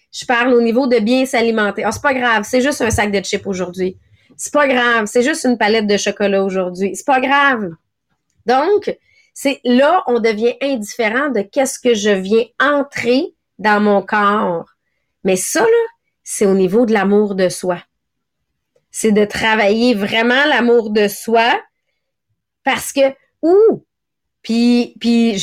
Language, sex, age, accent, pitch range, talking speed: English, female, 30-49, Canadian, 200-245 Hz, 160 wpm